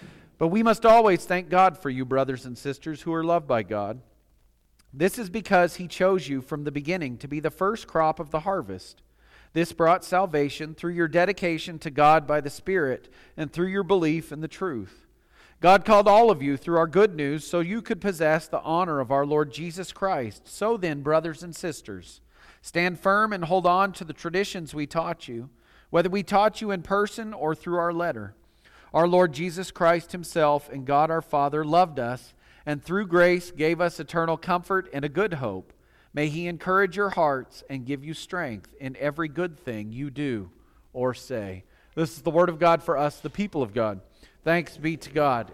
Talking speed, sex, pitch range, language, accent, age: 200 wpm, male, 145-185 Hz, English, American, 40-59